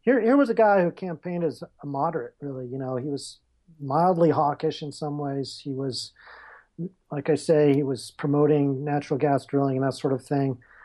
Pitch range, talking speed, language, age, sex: 140-175 Hz, 200 wpm, English, 40-59, male